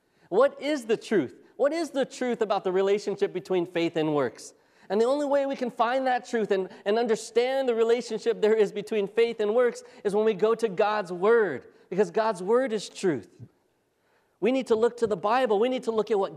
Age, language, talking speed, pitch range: 40-59, English, 220 wpm, 190-235 Hz